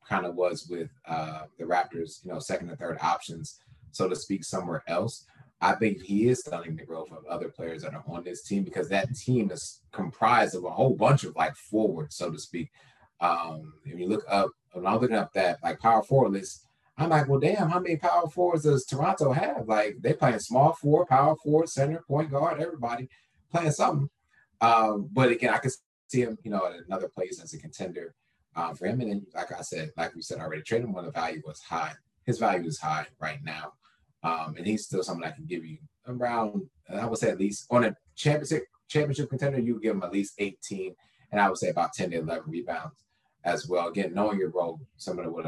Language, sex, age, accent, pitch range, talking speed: English, male, 30-49, American, 90-140 Hz, 225 wpm